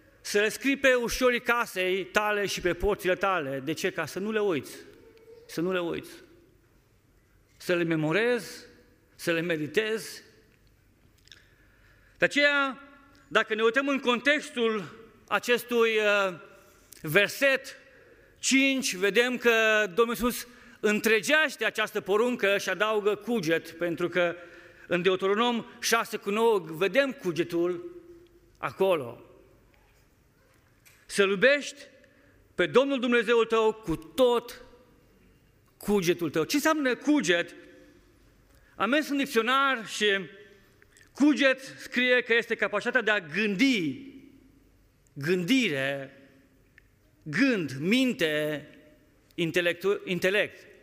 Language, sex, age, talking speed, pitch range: Romanian, male, 40-59, 105 wpm, 175-250 Hz